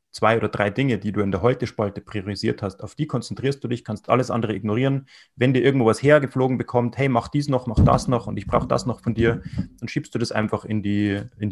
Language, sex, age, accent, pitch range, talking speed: German, male, 30-49, German, 105-125 Hz, 240 wpm